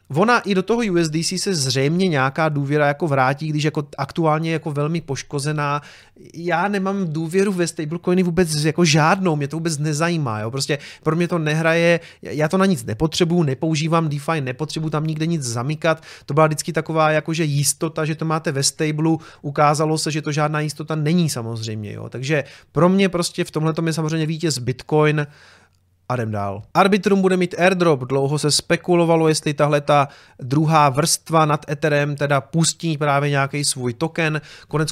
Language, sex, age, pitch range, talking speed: Czech, male, 30-49, 145-170 Hz, 170 wpm